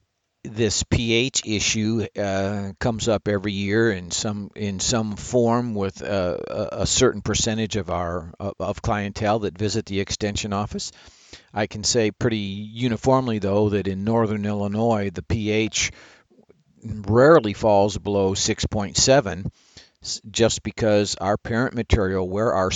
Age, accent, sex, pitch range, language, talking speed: 50-69, American, male, 95-110 Hz, English, 130 wpm